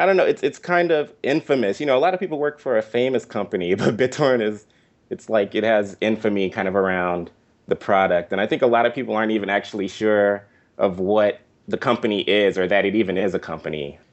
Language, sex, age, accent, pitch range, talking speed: English, male, 30-49, American, 90-115 Hz, 235 wpm